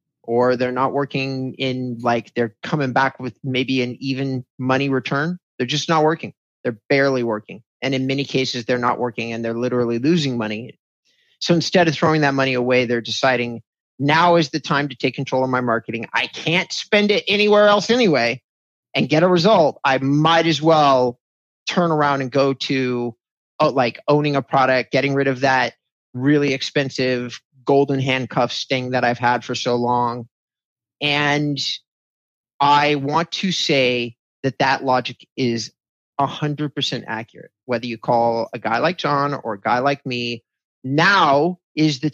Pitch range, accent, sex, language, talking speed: 125-150 Hz, American, male, English, 170 wpm